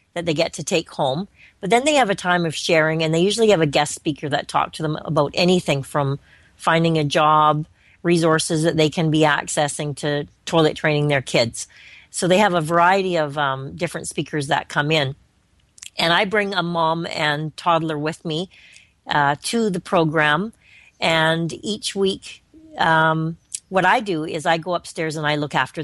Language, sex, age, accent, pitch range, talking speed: English, female, 40-59, American, 150-180 Hz, 190 wpm